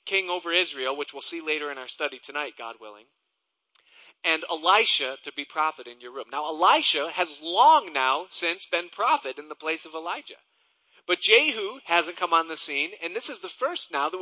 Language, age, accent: English, 40-59, American